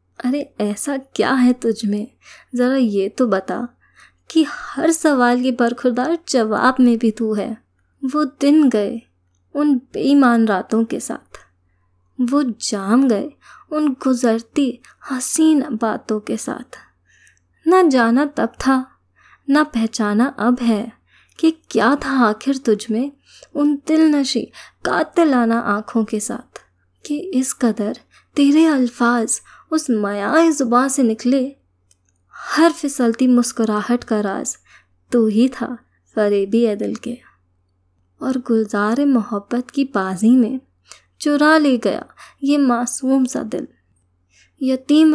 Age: 20-39